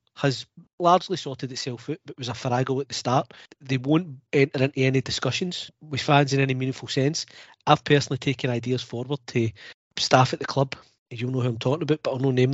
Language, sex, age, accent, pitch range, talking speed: English, male, 40-59, British, 125-145 Hz, 205 wpm